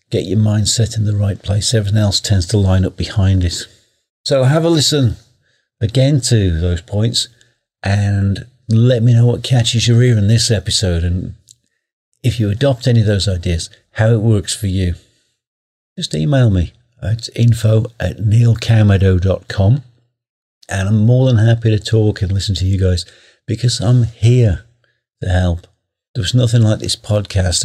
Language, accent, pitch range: English, British, 95-120 Hz